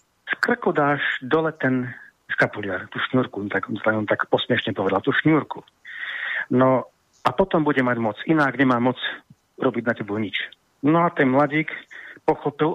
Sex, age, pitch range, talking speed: male, 50-69, 125-155 Hz, 160 wpm